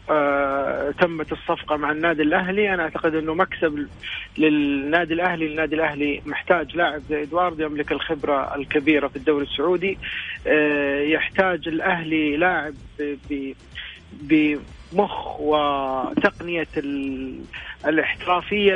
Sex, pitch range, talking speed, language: male, 150-180 Hz, 100 wpm, Arabic